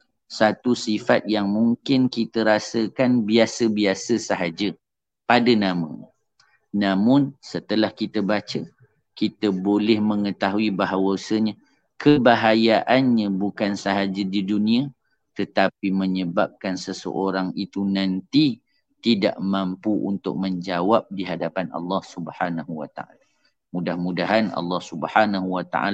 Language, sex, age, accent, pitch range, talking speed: English, male, 40-59, Indonesian, 95-110 Hz, 90 wpm